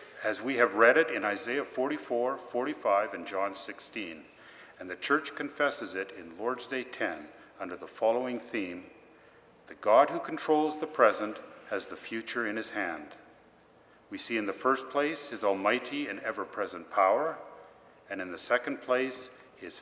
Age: 50-69